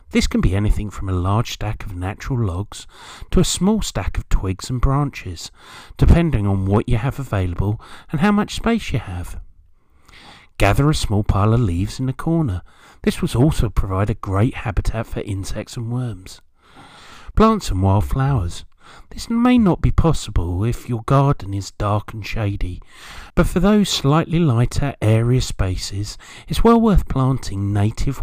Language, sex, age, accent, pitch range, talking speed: English, male, 40-59, British, 95-125 Hz, 165 wpm